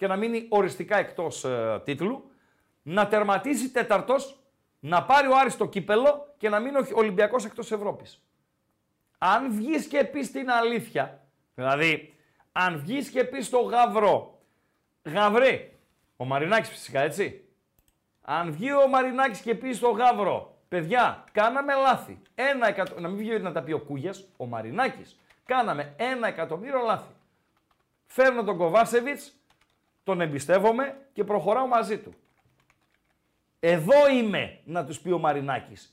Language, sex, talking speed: Greek, male, 140 wpm